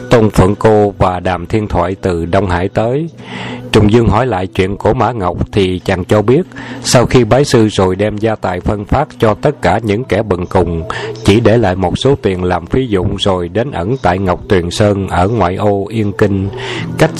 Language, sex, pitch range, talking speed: Vietnamese, male, 90-110 Hz, 215 wpm